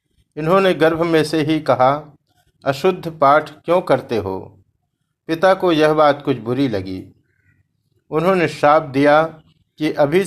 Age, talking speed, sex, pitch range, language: 60-79, 135 wpm, male, 125-165 Hz, Hindi